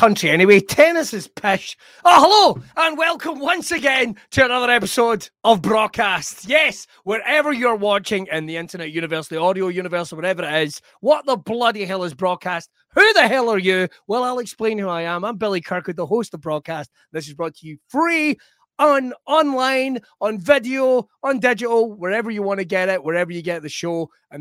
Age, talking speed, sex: 30-49, 195 wpm, male